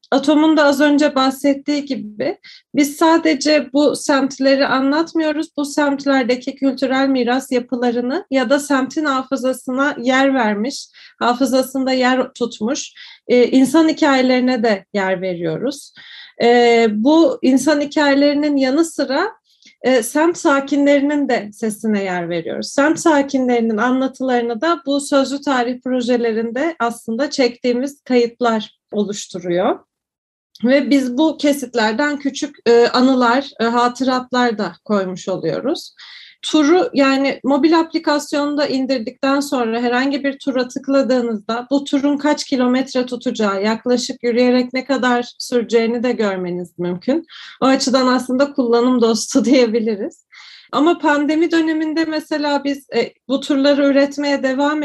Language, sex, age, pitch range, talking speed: Turkish, female, 40-59, 240-290 Hz, 115 wpm